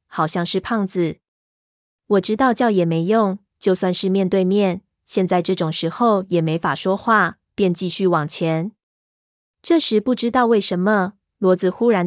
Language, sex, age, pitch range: Chinese, female, 20-39, 175-210 Hz